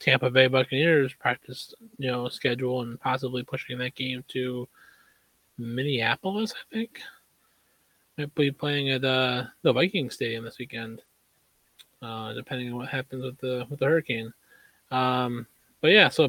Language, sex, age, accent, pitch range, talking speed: English, male, 20-39, American, 125-145 Hz, 150 wpm